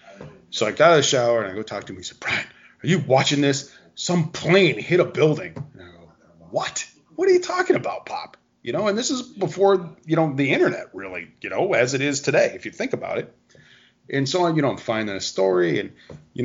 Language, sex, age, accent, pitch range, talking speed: English, male, 30-49, American, 115-145 Hz, 250 wpm